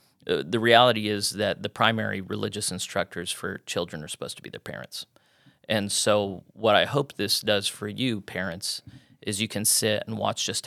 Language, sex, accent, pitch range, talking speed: English, male, American, 100-115 Hz, 185 wpm